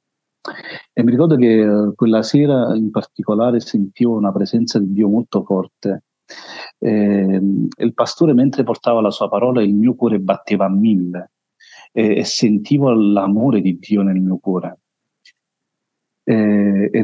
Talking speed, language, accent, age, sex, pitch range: 130 wpm, Italian, native, 40-59, male, 100-120 Hz